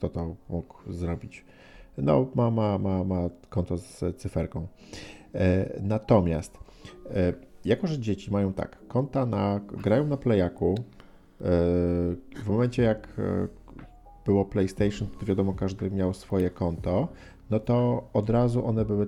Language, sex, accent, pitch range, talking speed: Polish, male, native, 95-115 Hz, 140 wpm